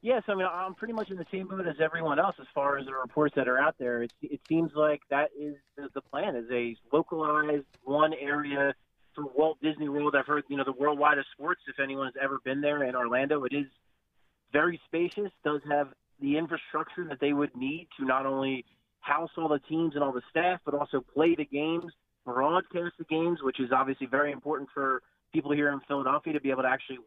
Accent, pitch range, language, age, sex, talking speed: American, 140-165 Hz, English, 30-49, male, 220 wpm